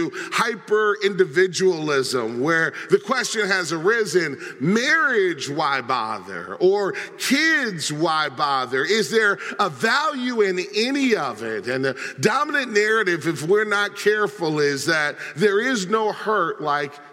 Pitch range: 185-235 Hz